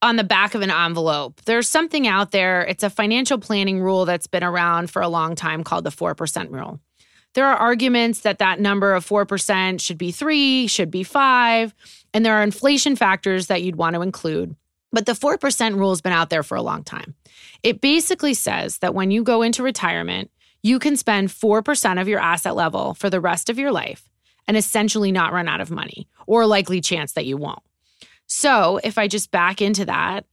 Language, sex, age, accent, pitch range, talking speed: English, female, 20-39, American, 180-230 Hz, 210 wpm